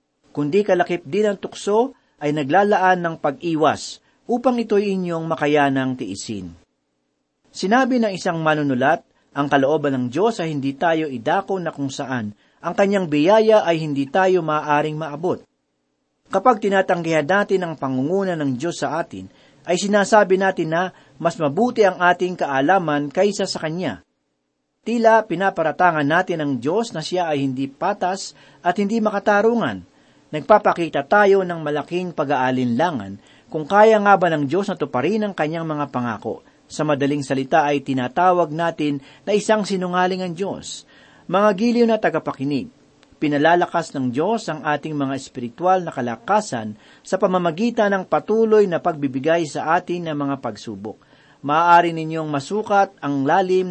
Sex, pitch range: male, 145-195 Hz